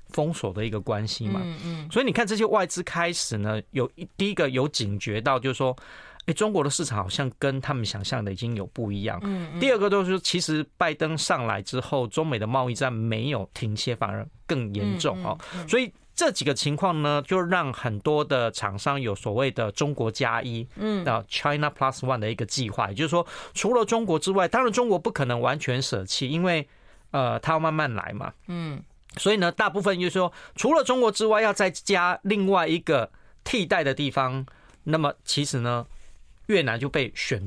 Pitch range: 115-175 Hz